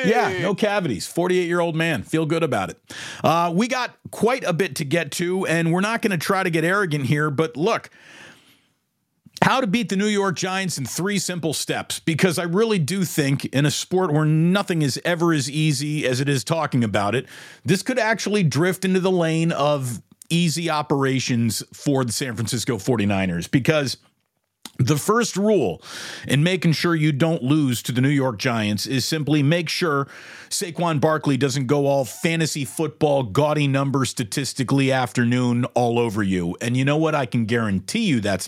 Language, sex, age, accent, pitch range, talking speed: English, male, 40-59, American, 135-180 Hz, 185 wpm